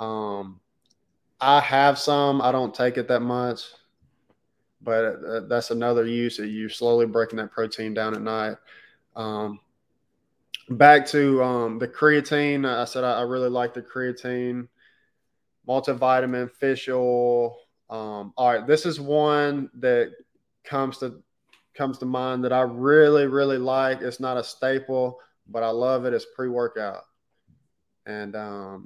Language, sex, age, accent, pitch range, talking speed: English, male, 20-39, American, 115-130 Hz, 145 wpm